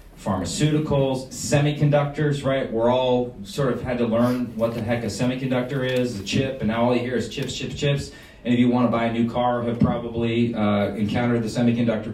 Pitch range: 110-130 Hz